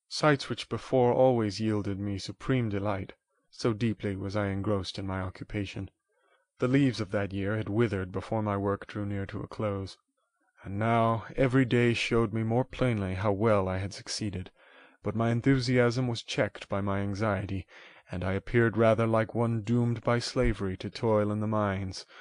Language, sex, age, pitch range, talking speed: English, male, 30-49, 100-120 Hz, 180 wpm